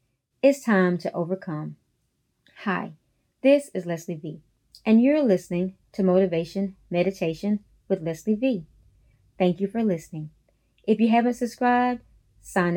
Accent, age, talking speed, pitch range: American, 30-49, 125 wpm, 170-215 Hz